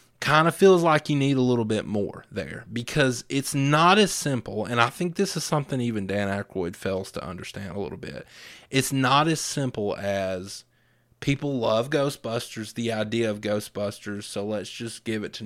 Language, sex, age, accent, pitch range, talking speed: English, male, 30-49, American, 110-150 Hz, 190 wpm